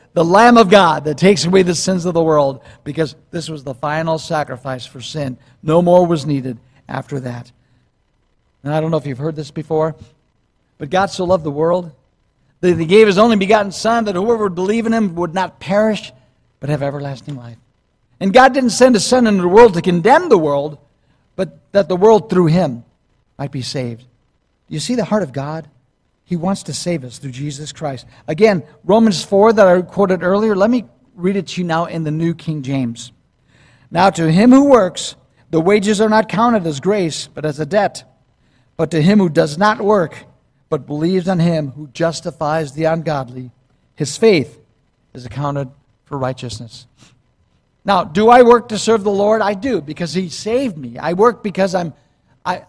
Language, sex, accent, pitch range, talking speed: English, male, American, 140-200 Hz, 195 wpm